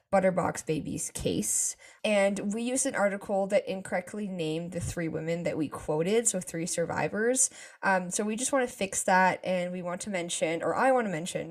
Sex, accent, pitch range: female, American, 170-210 Hz